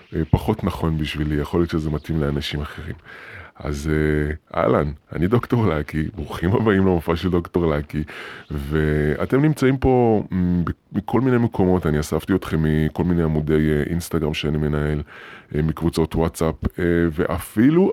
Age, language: 20-39, Hebrew